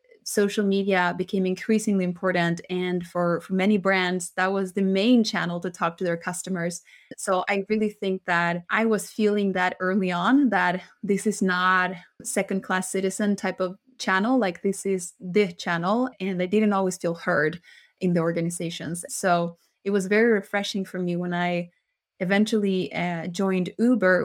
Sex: female